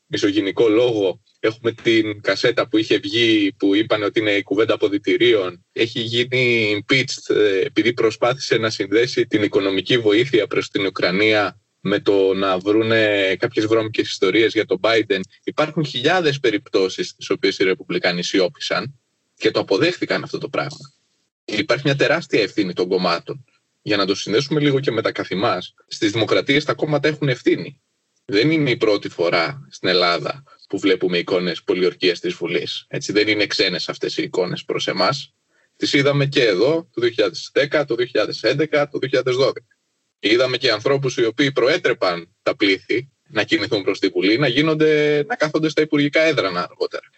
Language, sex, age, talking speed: Greek, male, 20-39, 160 wpm